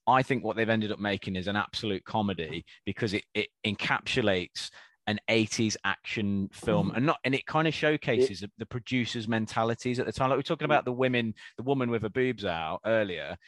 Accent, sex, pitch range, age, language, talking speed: British, male, 105-135 Hz, 20-39, English, 205 wpm